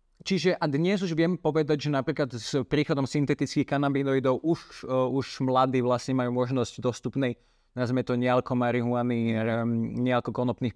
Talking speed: 135 wpm